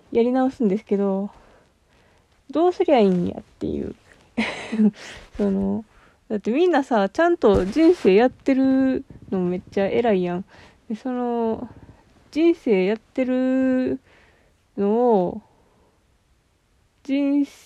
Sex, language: female, Japanese